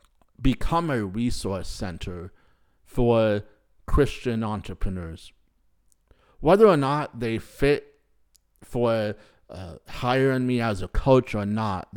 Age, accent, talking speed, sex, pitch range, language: 50-69, American, 105 wpm, male, 95-125 Hz, English